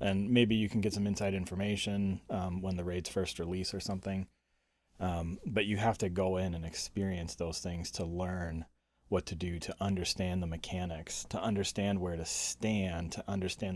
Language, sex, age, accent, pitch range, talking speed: English, male, 30-49, American, 85-105 Hz, 190 wpm